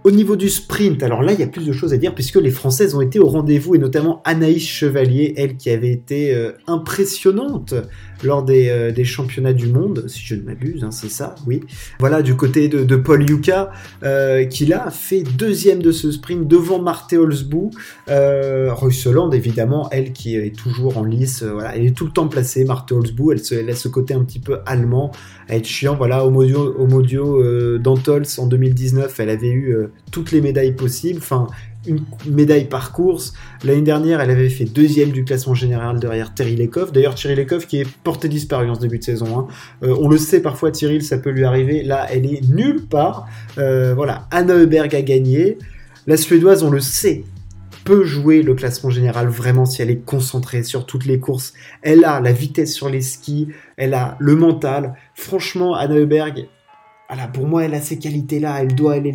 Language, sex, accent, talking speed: French, male, French, 210 wpm